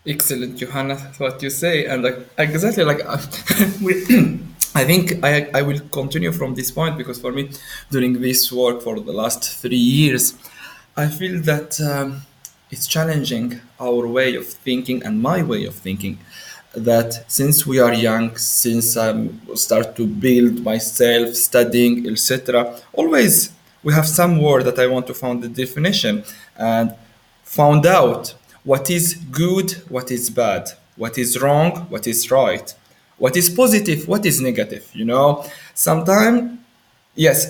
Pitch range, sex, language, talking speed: 130-180 Hz, male, Finnish, 150 wpm